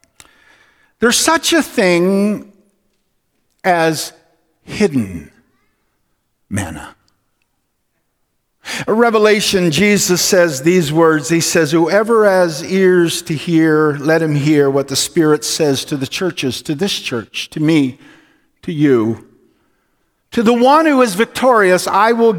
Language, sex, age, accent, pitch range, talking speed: English, male, 50-69, American, 165-230 Hz, 120 wpm